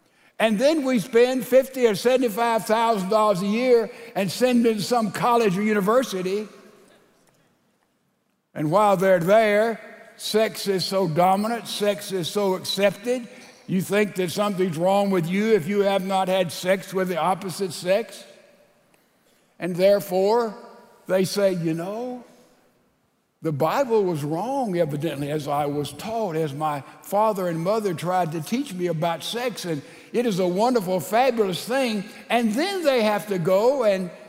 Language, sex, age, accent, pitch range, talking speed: English, male, 60-79, American, 185-230 Hz, 150 wpm